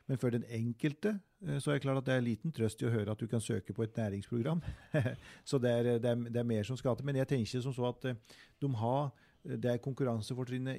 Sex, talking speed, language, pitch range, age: male, 260 wpm, English, 110-130 Hz, 40-59